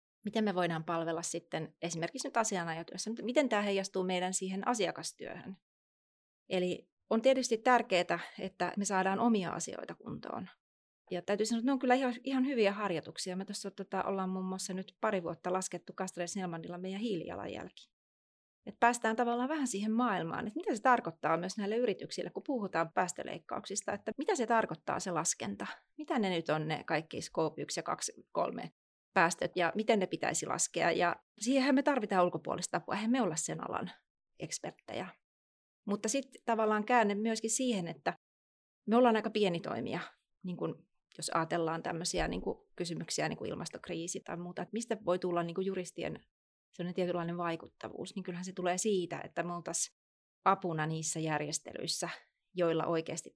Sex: female